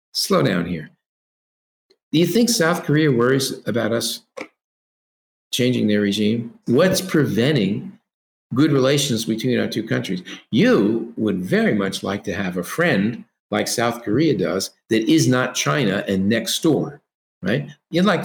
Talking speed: 150 wpm